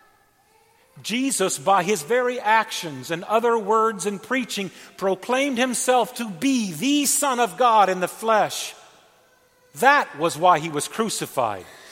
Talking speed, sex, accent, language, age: 135 wpm, male, American, English, 50-69